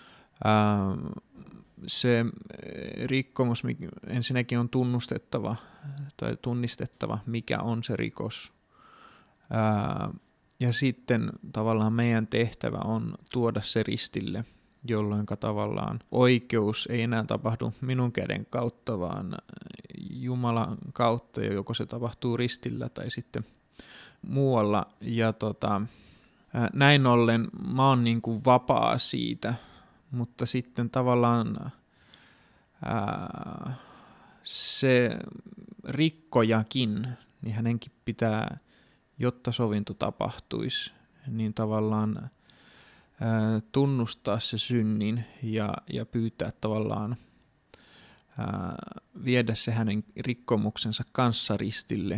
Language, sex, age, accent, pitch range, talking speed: Finnish, male, 20-39, native, 110-125 Hz, 90 wpm